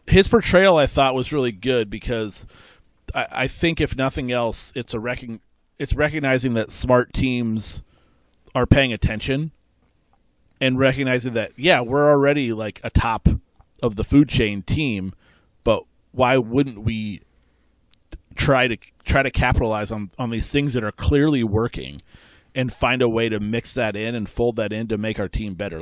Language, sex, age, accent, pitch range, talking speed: English, male, 30-49, American, 100-125 Hz, 170 wpm